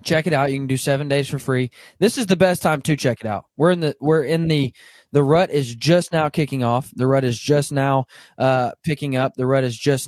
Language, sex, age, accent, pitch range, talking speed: English, male, 20-39, American, 125-155 Hz, 260 wpm